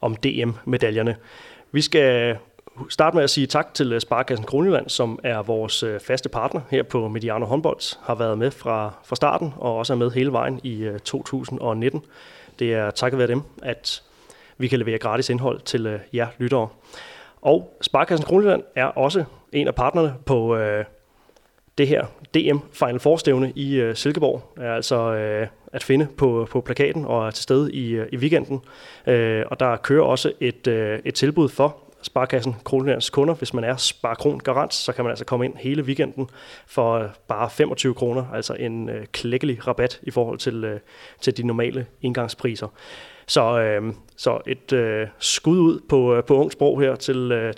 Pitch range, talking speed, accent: 115-135 Hz, 170 wpm, native